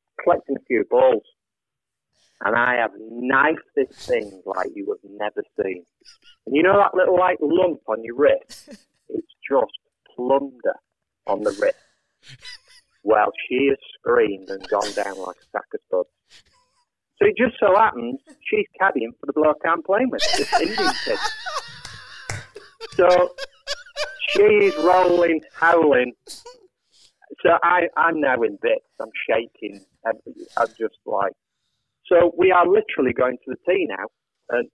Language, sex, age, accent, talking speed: English, male, 40-59, British, 145 wpm